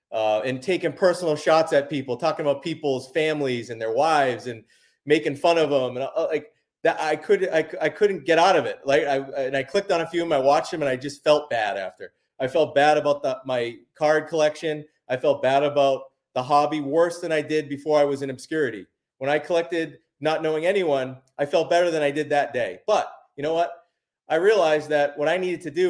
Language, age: English, 30-49